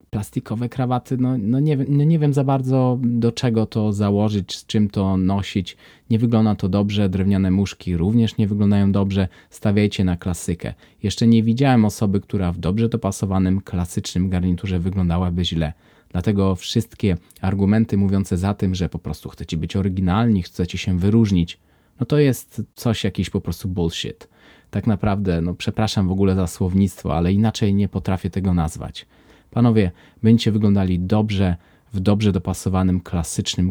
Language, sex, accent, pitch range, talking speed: Polish, male, native, 90-105 Hz, 155 wpm